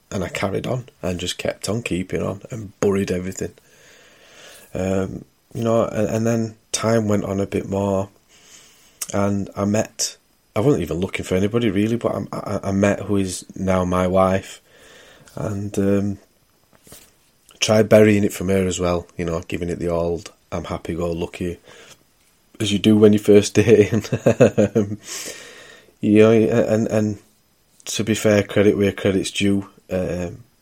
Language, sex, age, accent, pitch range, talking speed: English, male, 30-49, British, 95-105 Hz, 165 wpm